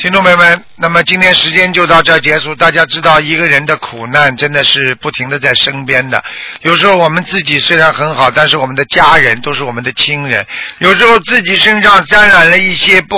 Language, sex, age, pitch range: Chinese, male, 50-69, 155-200 Hz